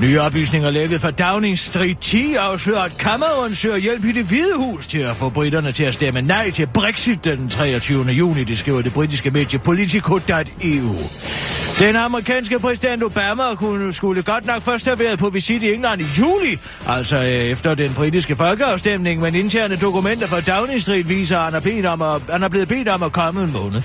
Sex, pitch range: male, 150-215 Hz